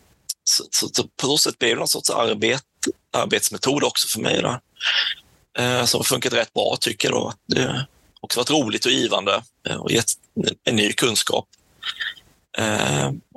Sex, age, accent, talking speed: male, 30-49, native, 160 wpm